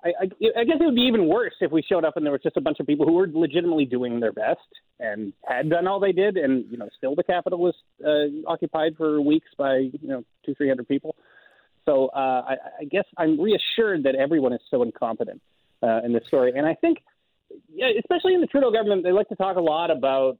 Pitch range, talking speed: 130-215 Hz, 240 wpm